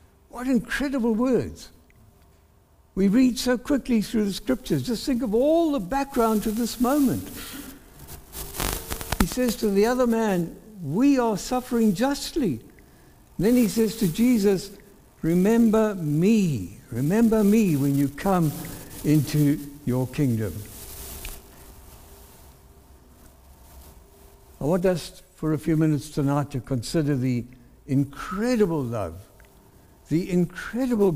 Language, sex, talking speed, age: English, male, 115 wpm, 60-79